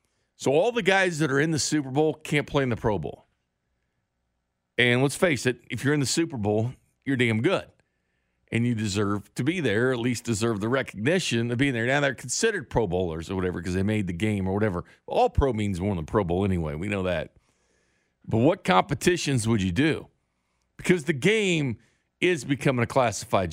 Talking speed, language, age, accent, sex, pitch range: 205 wpm, English, 50-69, American, male, 110-165 Hz